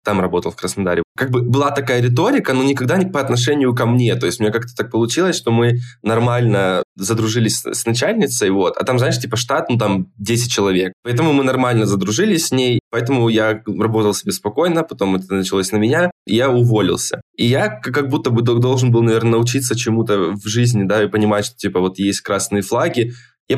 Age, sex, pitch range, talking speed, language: 20-39, male, 105-125 Hz, 205 wpm, Russian